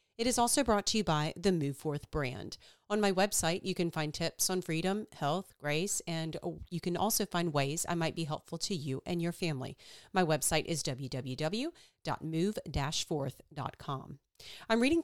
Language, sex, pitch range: English, female, 145-185 Hz